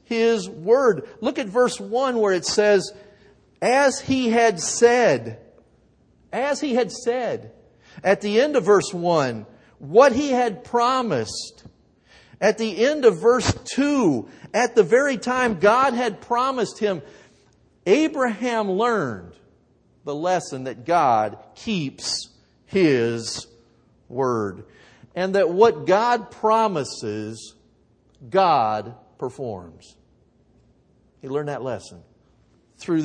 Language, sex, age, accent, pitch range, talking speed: English, male, 50-69, American, 150-235 Hz, 115 wpm